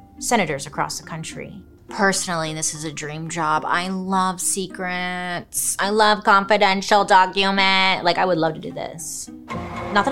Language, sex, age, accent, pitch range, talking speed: English, female, 30-49, American, 165-220 Hz, 155 wpm